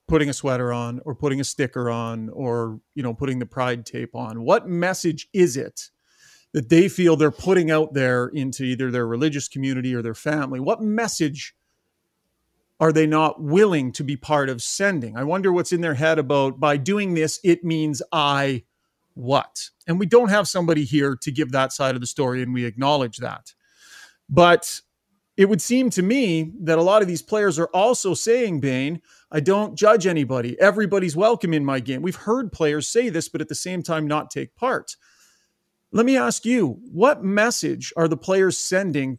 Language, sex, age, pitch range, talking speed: English, male, 40-59, 145-205 Hz, 195 wpm